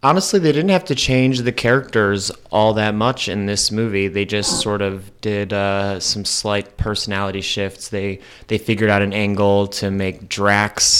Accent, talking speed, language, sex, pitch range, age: American, 180 wpm, English, male, 95-105 Hz, 30-49